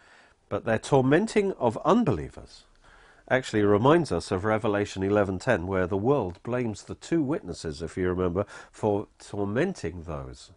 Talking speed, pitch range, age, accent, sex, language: 135 wpm, 90-125 Hz, 50-69, British, male, English